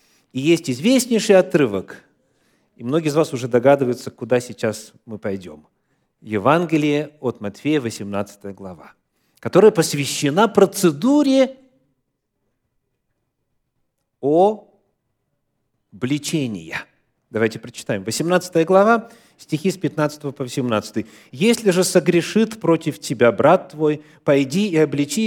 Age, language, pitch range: 40-59, Russian, 130-185 Hz